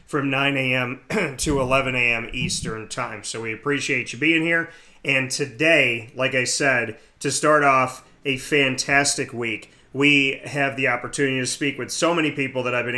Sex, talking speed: male, 175 wpm